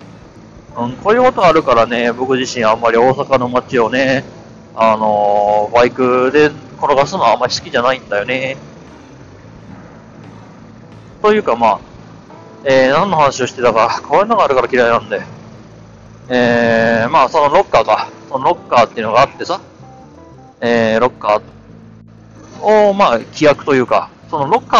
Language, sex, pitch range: Japanese, male, 115-185 Hz